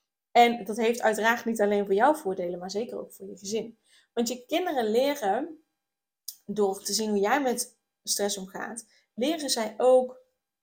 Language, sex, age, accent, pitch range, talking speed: Dutch, female, 20-39, Dutch, 200-245 Hz, 170 wpm